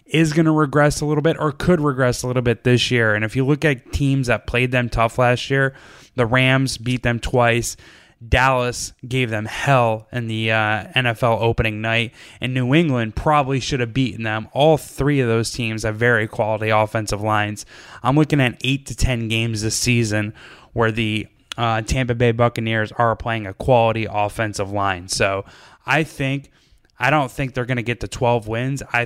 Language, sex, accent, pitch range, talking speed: English, male, American, 110-130 Hz, 195 wpm